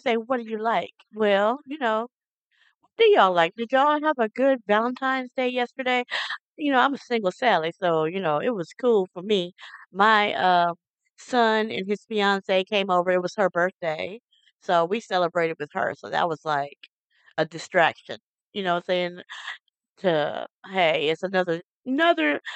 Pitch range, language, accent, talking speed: 180-260 Hz, English, American, 175 wpm